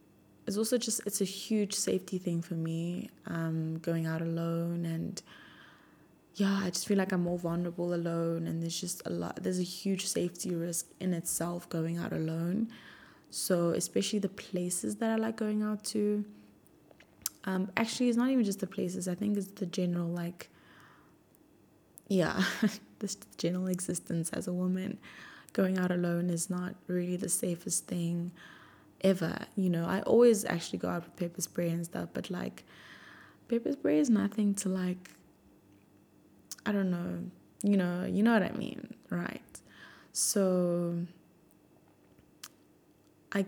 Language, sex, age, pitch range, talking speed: English, female, 20-39, 170-200 Hz, 155 wpm